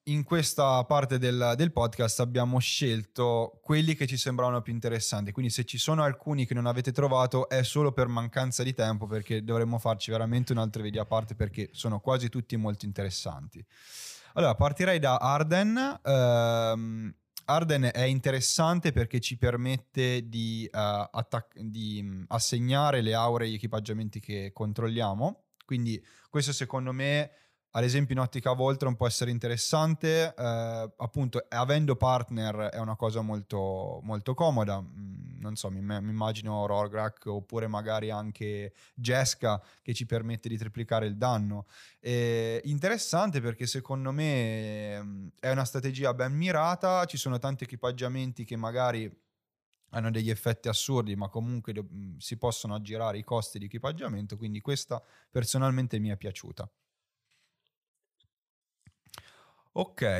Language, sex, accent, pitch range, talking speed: Italian, male, native, 110-135 Hz, 140 wpm